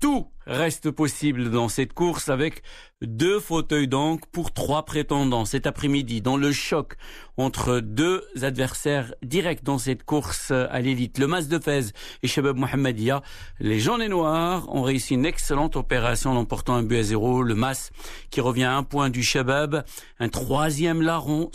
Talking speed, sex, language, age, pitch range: 170 wpm, male, Arabic, 60-79, 130-155 Hz